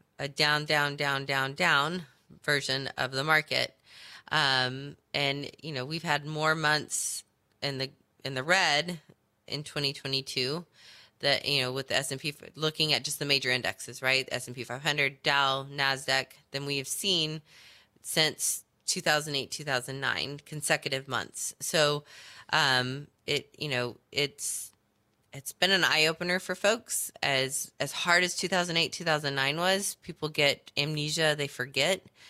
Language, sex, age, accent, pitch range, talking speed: English, female, 20-39, American, 135-165 Hz, 140 wpm